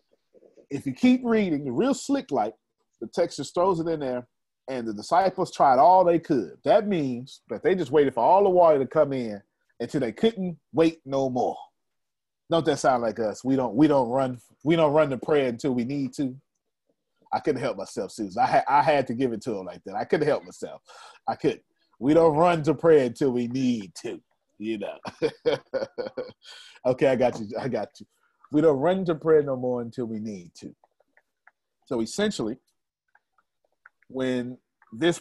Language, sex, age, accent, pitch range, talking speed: English, male, 30-49, American, 130-195 Hz, 195 wpm